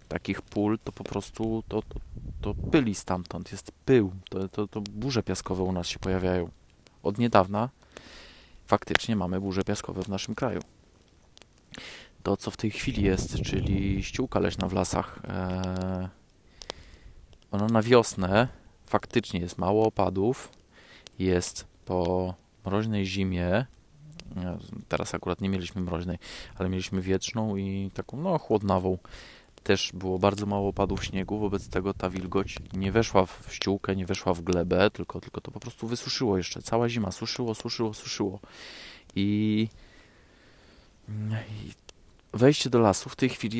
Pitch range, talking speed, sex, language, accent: 95-110 Hz, 140 wpm, male, Polish, native